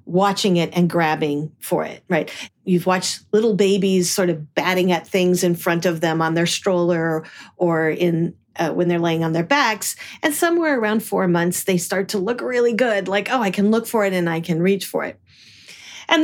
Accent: American